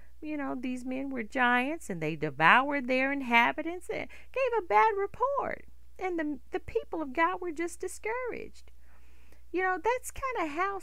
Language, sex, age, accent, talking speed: English, female, 40-59, American, 170 wpm